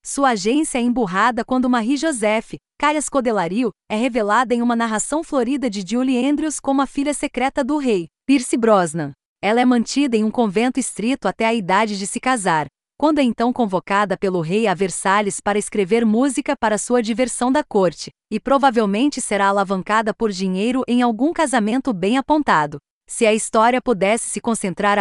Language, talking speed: Portuguese, 170 wpm